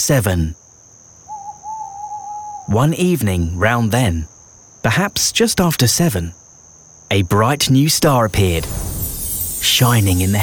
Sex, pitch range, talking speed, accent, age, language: male, 95-140 Hz, 100 wpm, British, 30-49, English